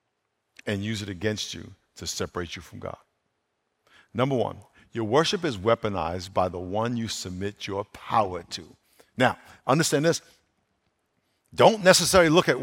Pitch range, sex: 105-130 Hz, male